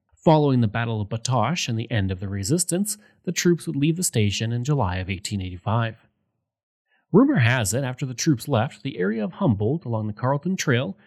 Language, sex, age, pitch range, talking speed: English, male, 30-49, 110-160 Hz, 195 wpm